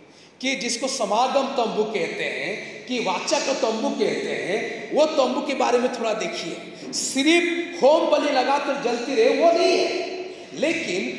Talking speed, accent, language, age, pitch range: 150 wpm, native, Hindi, 40-59, 205-320 Hz